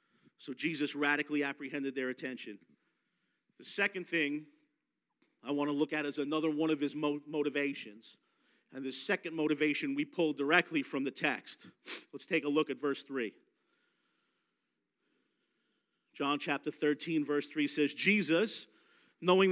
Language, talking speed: English, 140 wpm